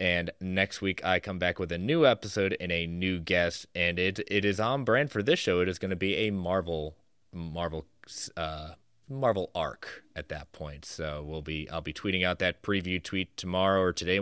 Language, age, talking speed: English, 20-39, 210 wpm